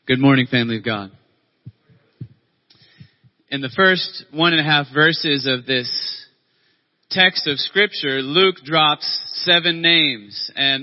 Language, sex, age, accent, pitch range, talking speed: English, male, 30-49, American, 140-175 Hz, 125 wpm